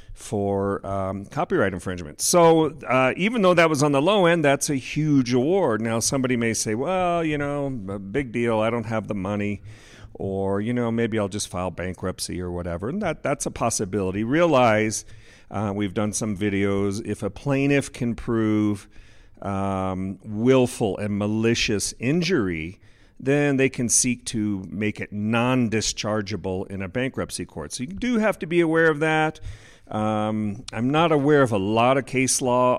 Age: 50-69